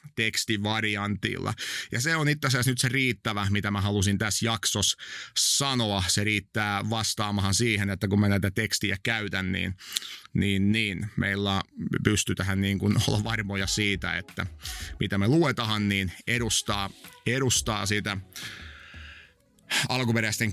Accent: native